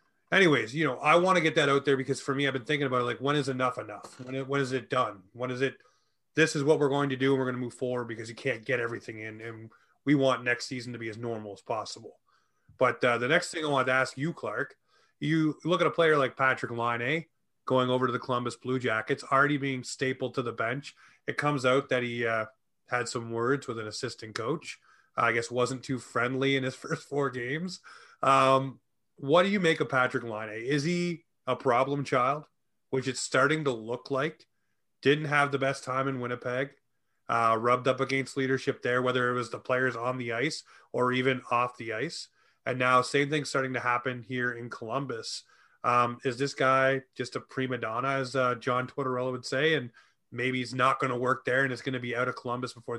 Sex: male